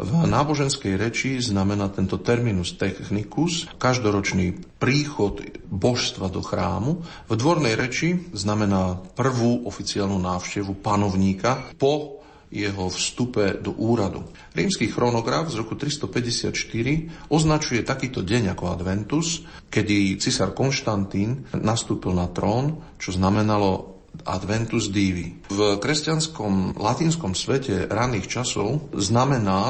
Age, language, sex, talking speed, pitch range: 40-59, Slovak, male, 105 wpm, 95-125 Hz